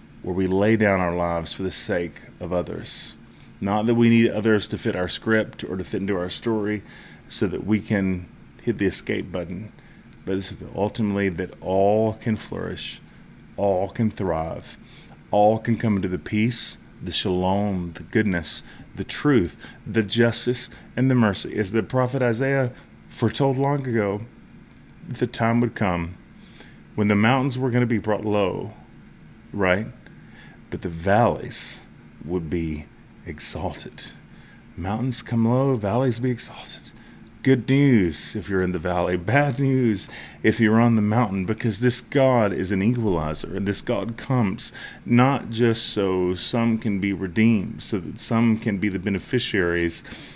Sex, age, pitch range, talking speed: male, 30-49, 95-120 Hz, 155 wpm